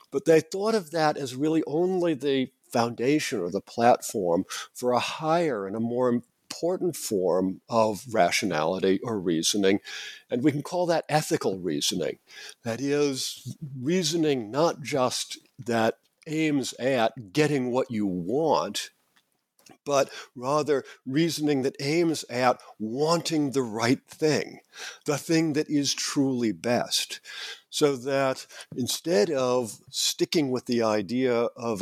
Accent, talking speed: American, 130 wpm